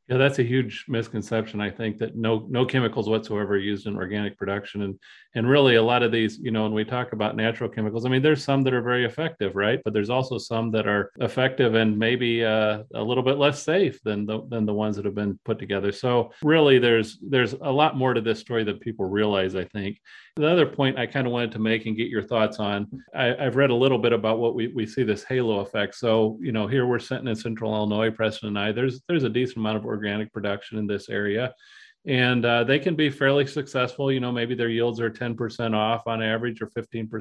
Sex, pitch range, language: male, 110-130 Hz, English